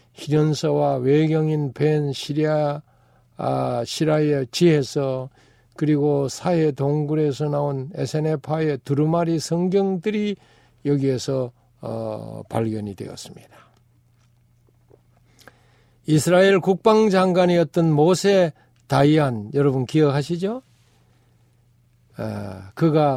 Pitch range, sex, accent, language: 120-165 Hz, male, native, Korean